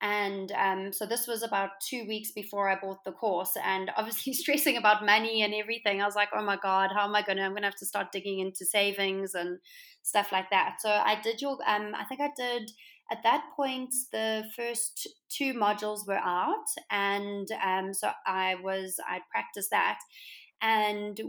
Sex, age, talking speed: female, 30-49, 200 wpm